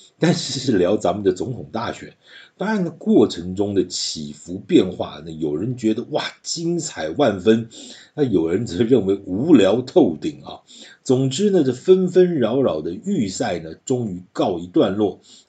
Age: 50-69